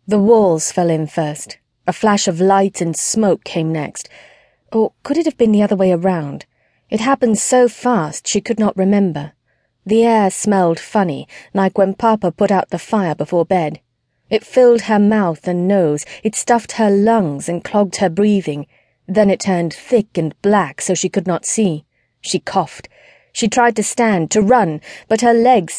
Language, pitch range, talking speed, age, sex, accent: English, 170-220 Hz, 185 wpm, 40-59, female, British